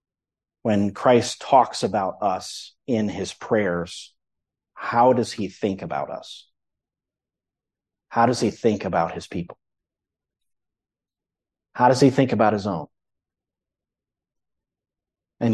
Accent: American